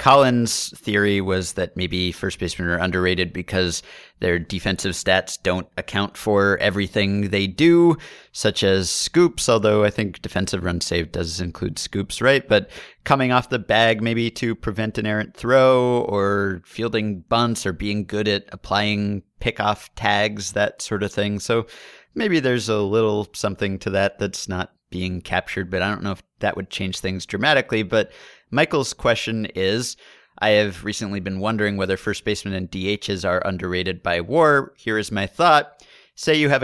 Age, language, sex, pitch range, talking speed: 30-49, English, male, 95-120 Hz, 170 wpm